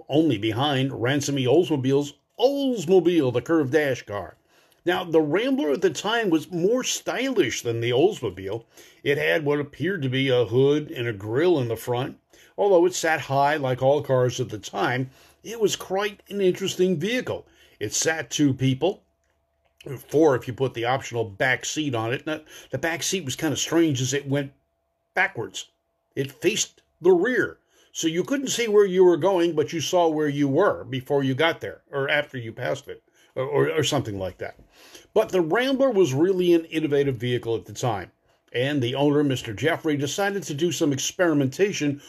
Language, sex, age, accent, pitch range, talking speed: English, male, 50-69, American, 130-180 Hz, 185 wpm